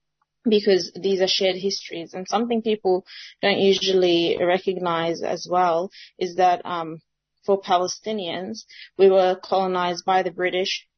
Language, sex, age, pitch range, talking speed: English, female, 30-49, 170-195 Hz, 130 wpm